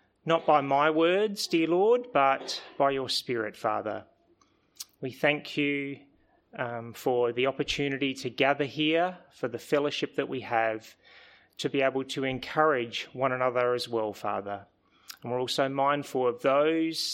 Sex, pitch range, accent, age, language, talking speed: male, 115-150 Hz, Australian, 30-49, English, 150 wpm